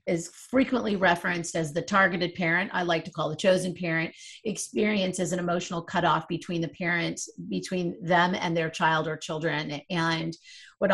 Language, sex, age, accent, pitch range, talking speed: English, female, 40-59, American, 170-195 Hz, 165 wpm